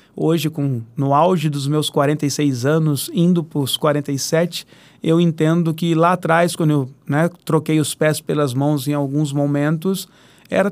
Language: Portuguese